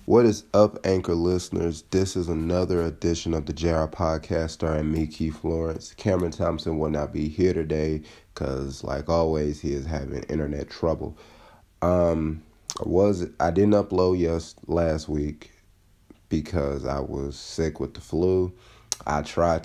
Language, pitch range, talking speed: English, 75-90 Hz, 155 wpm